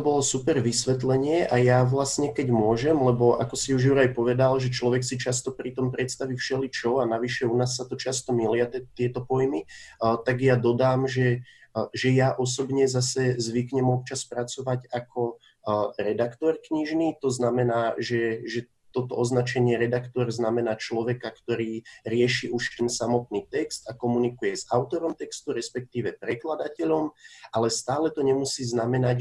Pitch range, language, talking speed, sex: 115-130 Hz, Slovak, 160 wpm, male